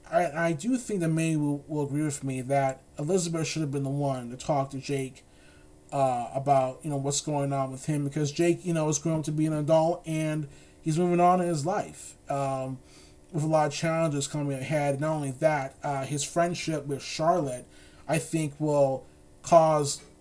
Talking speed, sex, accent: 205 wpm, male, American